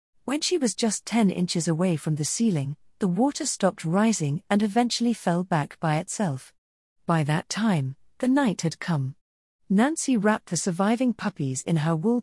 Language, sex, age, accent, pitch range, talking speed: English, female, 40-59, British, 155-215 Hz, 170 wpm